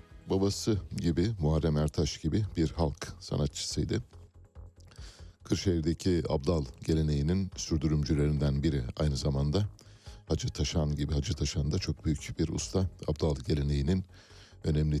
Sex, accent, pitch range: male, native, 75-100 Hz